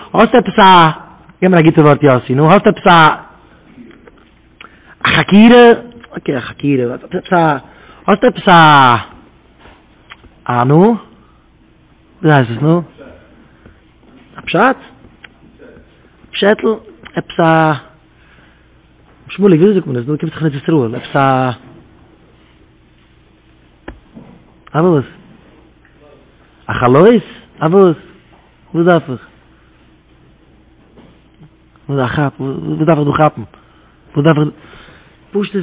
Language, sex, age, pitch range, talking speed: English, male, 30-49, 150-195 Hz, 40 wpm